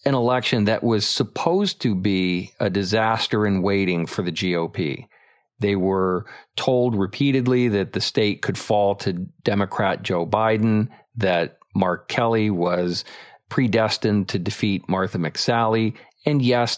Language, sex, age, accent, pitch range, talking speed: English, male, 40-59, American, 100-130 Hz, 135 wpm